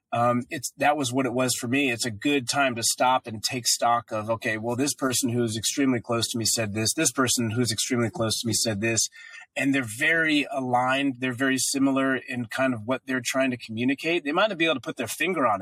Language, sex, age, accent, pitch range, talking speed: English, male, 30-49, American, 115-135 Hz, 245 wpm